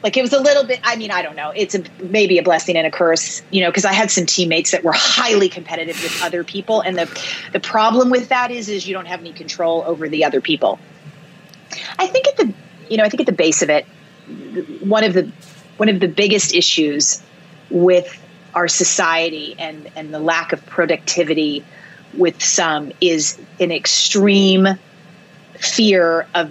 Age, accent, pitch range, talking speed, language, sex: 30-49, American, 170-215 Hz, 195 wpm, English, female